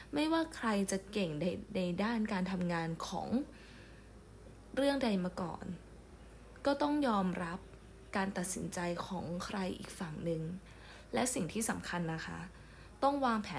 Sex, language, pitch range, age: female, Thai, 185-240 Hz, 20-39